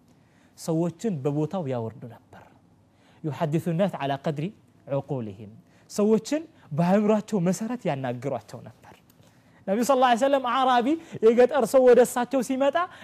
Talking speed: 110 wpm